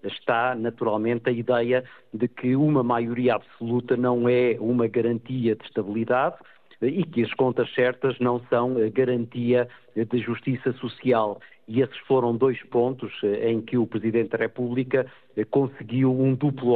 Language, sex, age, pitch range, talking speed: Portuguese, male, 50-69, 115-130 Hz, 145 wpm